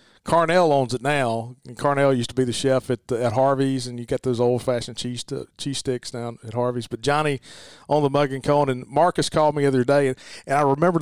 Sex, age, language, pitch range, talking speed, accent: male, 40-59, English, 120-140 Hz, 245 wpm, American